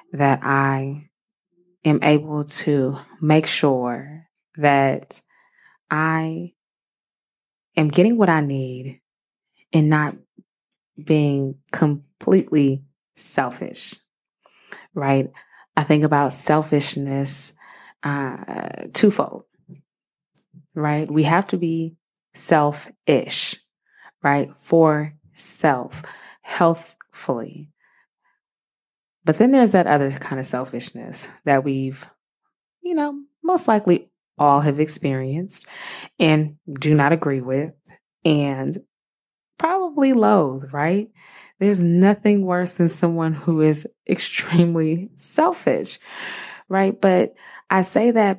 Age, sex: 20-39, female